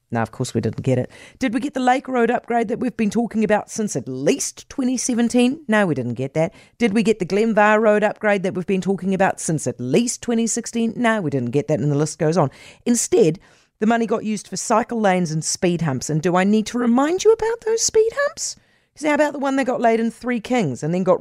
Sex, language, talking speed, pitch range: female, English, 250 wpm, 150-215 Hz